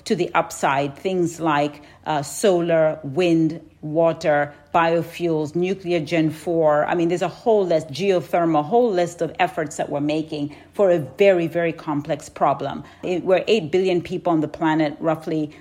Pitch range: 160-180 Hz